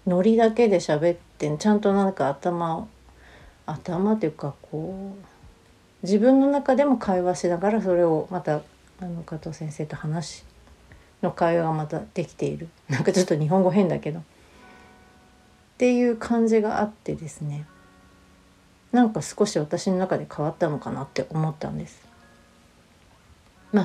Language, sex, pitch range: Japanese, female, 145-190 Hz